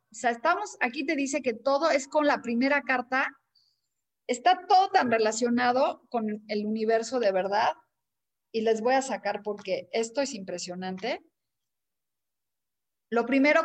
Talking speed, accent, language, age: 145 wpm, Mexican, Spanish, 40-59